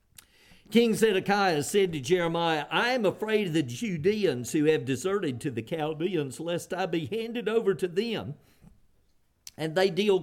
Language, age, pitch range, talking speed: English, 50-69, 130-200 Hz, 160 wpm